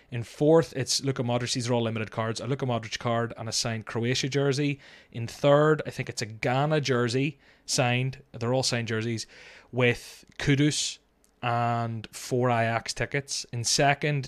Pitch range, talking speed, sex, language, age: 110-130 Hz, 170 wpm, male, English, 20-39